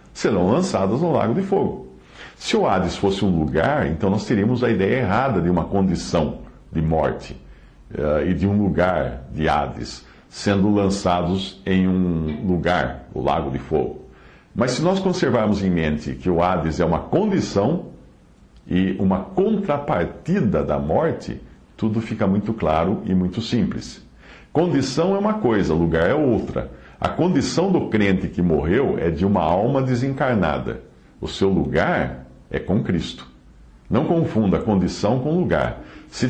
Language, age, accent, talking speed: English, 60-79, Brazilian, 150 wpm